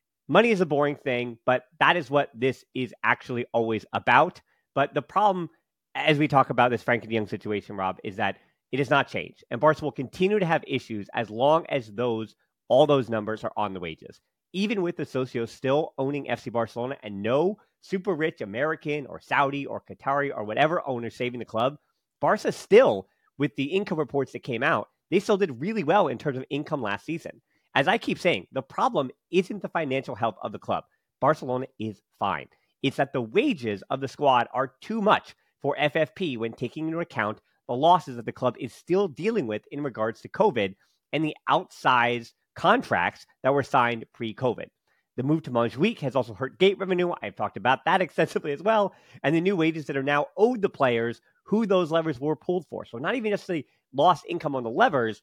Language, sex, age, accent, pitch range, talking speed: English, male, 30-49, American, 120-165 Hz, 205 wpm